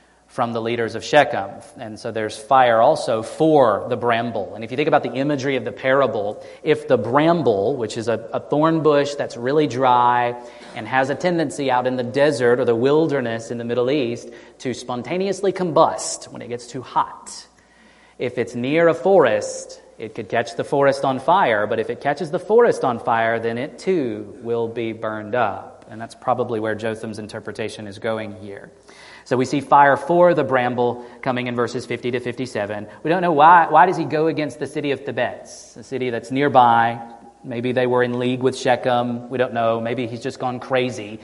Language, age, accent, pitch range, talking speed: English, 30-49, American, 115-145 Hz, 200 wpm